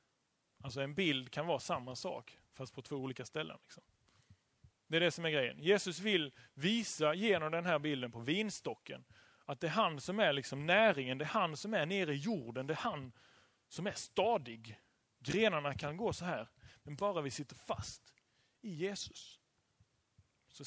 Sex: male